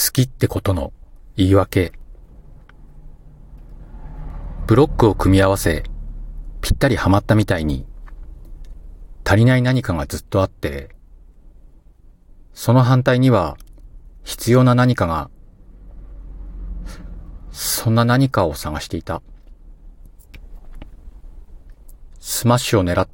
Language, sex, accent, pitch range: Japanese, male, native, 75-105 Hz